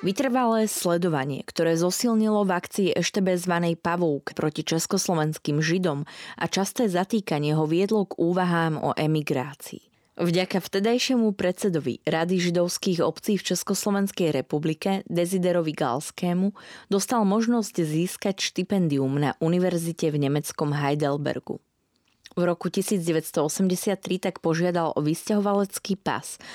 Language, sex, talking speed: Slovak, female, 110 wpm